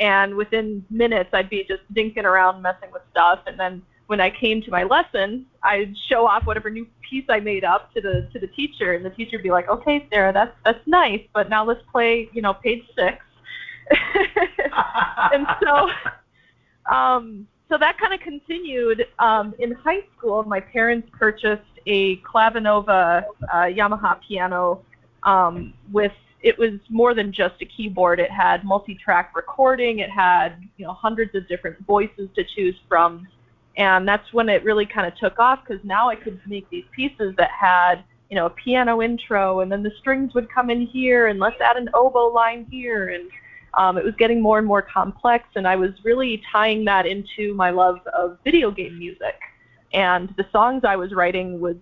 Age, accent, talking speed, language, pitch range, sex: 30-49, American, 190 wpm, English, 190-240 Hz, female